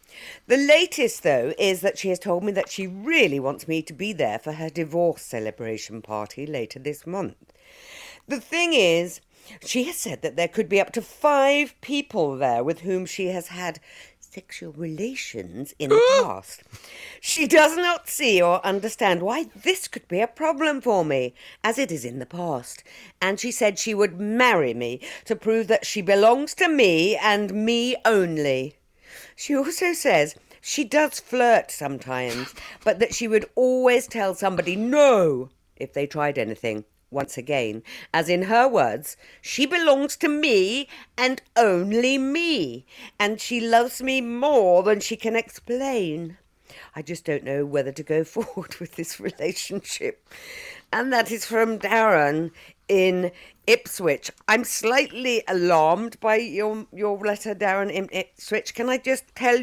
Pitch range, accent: 170-255 Hz, British